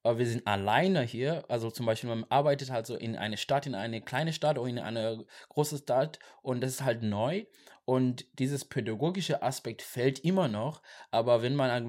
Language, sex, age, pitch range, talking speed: German, male, 20-39, 115-145 Hz, 190 wpm